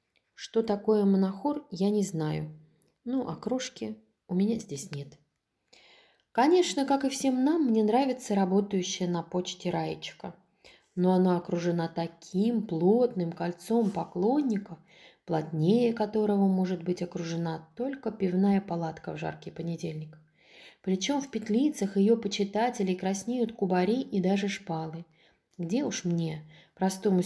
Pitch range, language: 170-225 Hz, Russian